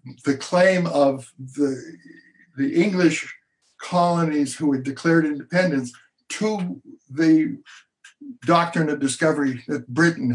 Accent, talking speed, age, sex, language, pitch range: American, 105 wpm, 60-79, male, English, 135-170 Hz